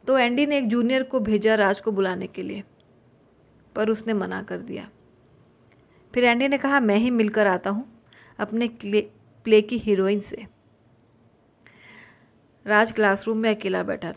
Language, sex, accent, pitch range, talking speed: Hindi, female, native, 185-230 Hz, 155 wpm